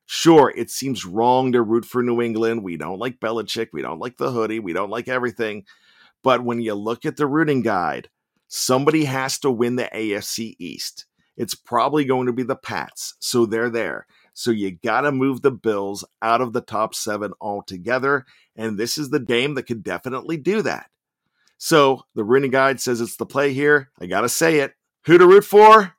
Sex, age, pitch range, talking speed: male, 50-69, 110-145 Hz, 205 wpm